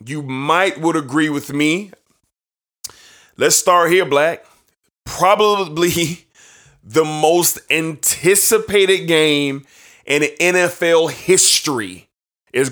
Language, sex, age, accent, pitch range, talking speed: English, male, 20-39, American, 130-180 Hz, 90 wpm